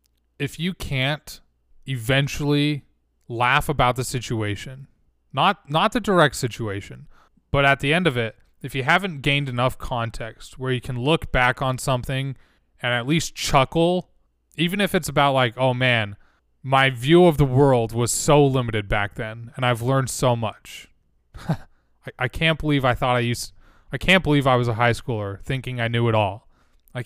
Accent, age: American, 20-39